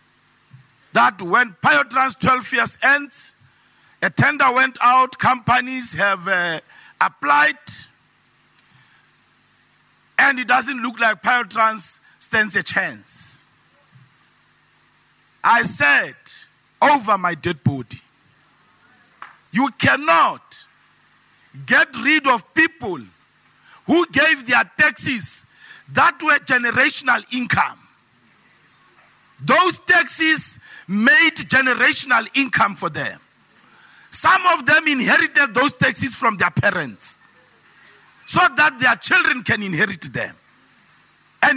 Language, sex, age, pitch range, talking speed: English, male, 50-69, 245-315 Hz, 95 wpm